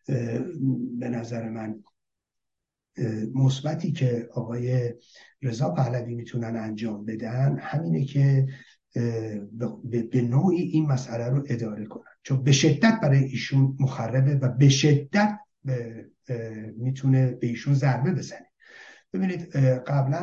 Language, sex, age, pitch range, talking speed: Persian, male, 60-79, 115-135 Hz, 105 wpm